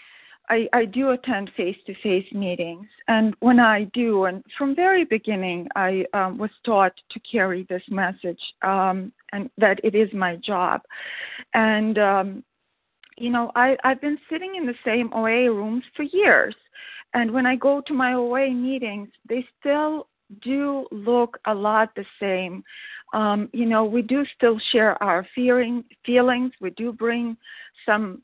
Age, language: 40-59, English